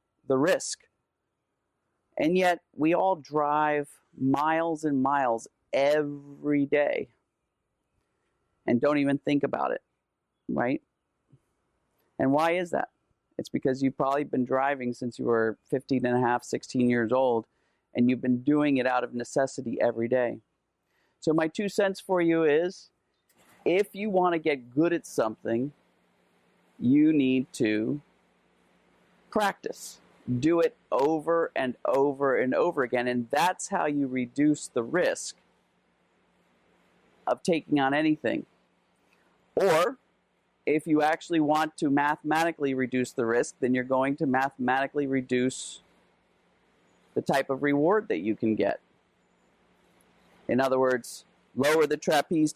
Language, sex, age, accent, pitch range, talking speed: English, male, 40-59, American, 125-155 Hz, 135 wpm